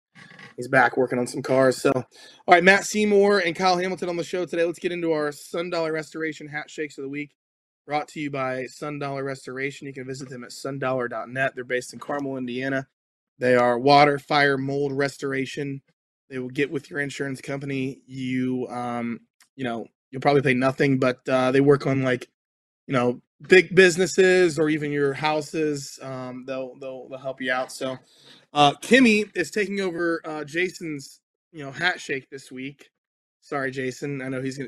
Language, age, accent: English, 20-39, American